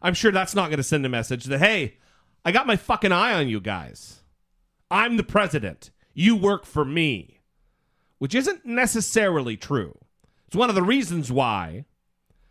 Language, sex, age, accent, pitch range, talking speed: English, male, 40-59, American, 145-210 Hz, 175 wpm